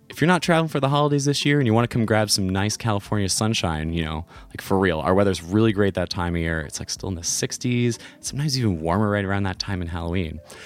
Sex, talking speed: male, 265 wpm